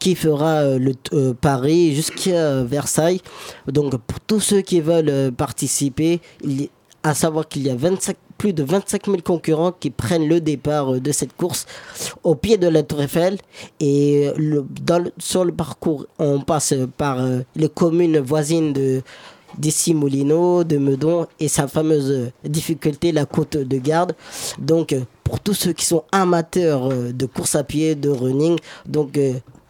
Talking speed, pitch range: 175 wpm, 140-175 Hz